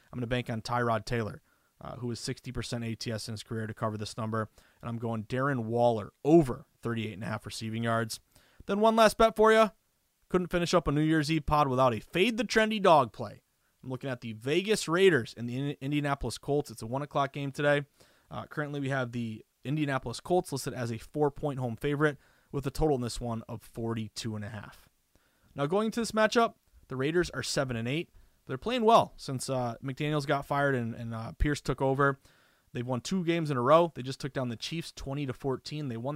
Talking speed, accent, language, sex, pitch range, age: 210 wpm, American, English, male, 120-165 Hz, 30-49